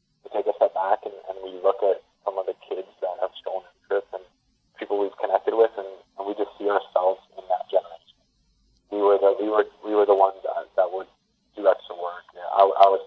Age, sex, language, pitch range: 20-39, male, English, 95-140 Hz